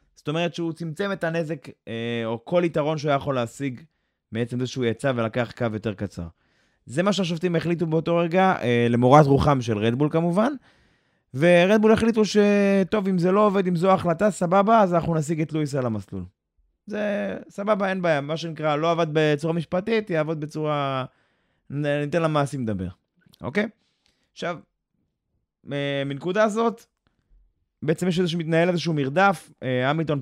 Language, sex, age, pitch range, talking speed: Hebrew, male, 20-39, 120-170 Hz, 150 wpm